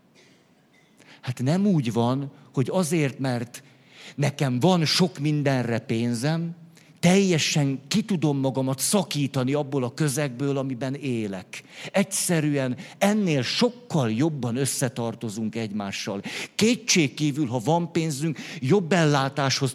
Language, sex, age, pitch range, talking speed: Hungarian, male, 50-69, 130-165 Hz, 105 wpm